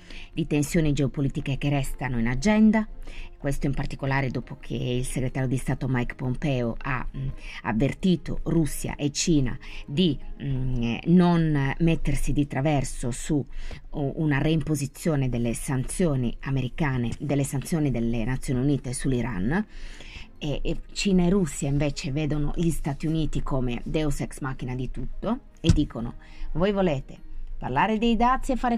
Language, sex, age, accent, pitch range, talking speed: Italian, female, 30-49, native, 130-190 Hz, 140 wpm